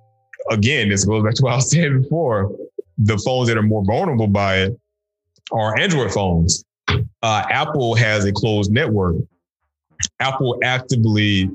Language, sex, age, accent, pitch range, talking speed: English, male, 20-39, American, 95-110 Hz, 150 wpm